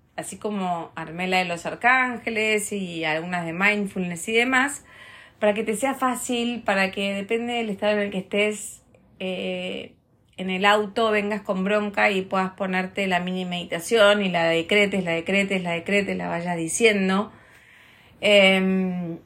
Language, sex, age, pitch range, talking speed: Spanish, female, 30-49, 170-215 Hz, 155 wpm